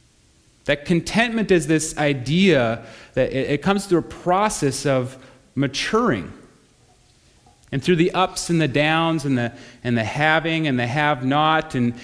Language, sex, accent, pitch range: English, male, American, 125-165 Hz